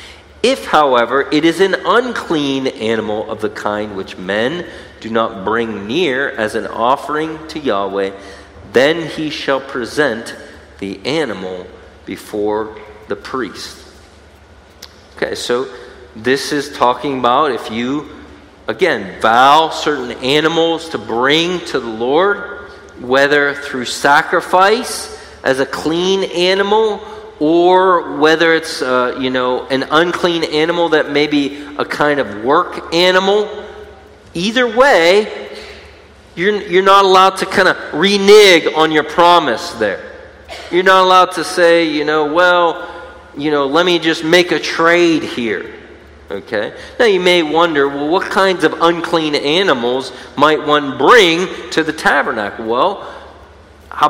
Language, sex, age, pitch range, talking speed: English, male, 40-59, 125-185 Hz, 135 wpm